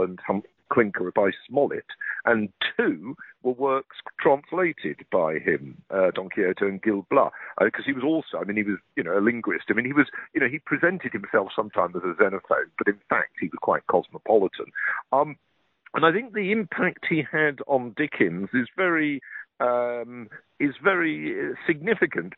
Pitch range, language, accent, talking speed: 115-155 Hz, English, British, 165 wpm